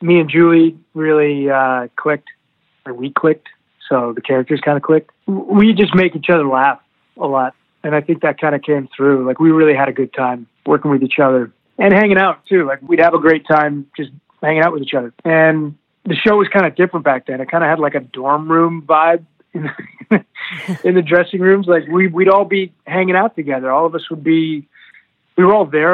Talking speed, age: 225 wpm, 30-49